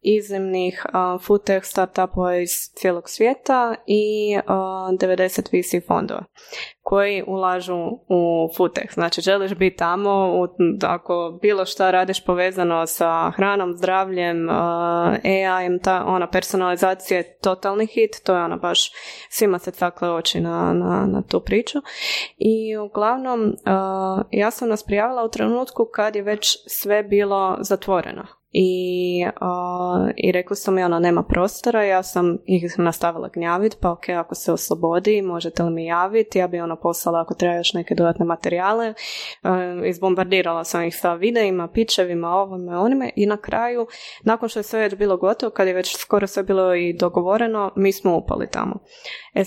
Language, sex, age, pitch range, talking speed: Croatian, female, 20-39, 175-210 Hz, 155 wpm